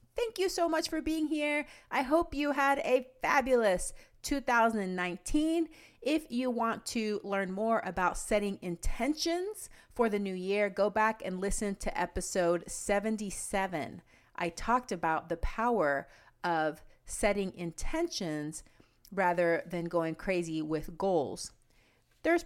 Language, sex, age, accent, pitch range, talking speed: English, female, 30-49, American, 170-240 Hz, 130 wpm